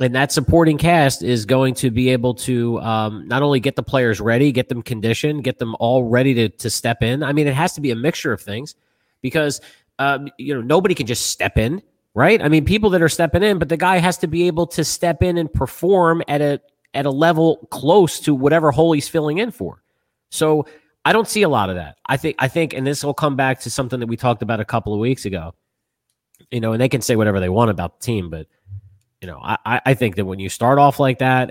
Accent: American